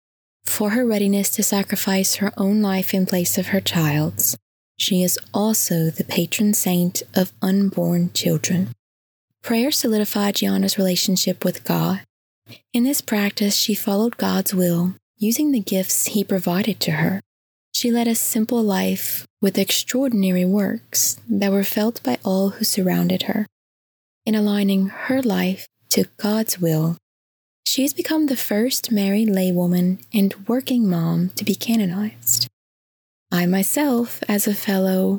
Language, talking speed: English, 140 wpm